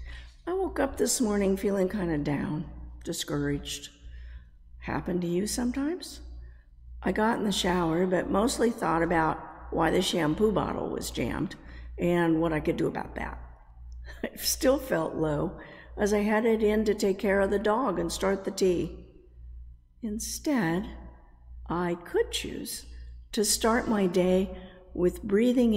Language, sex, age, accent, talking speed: English, female, 50-69, American, 145 wpm